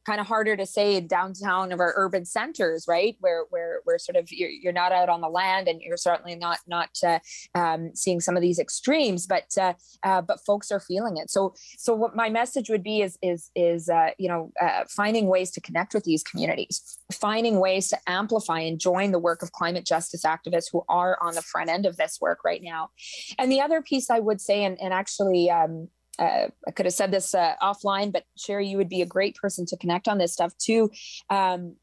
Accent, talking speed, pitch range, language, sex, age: American, 230 wpm, 175-210 Hz, English, female, 20-39